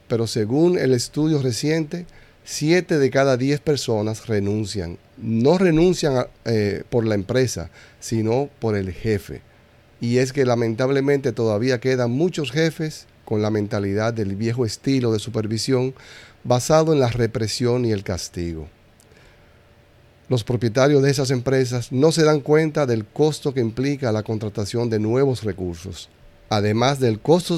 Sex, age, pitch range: male, 40-59, 105-135 Hz